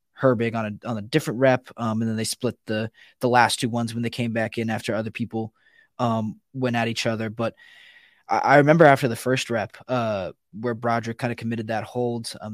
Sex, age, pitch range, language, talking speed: male, 20-39, 110-125 Hz, English, 225 wpm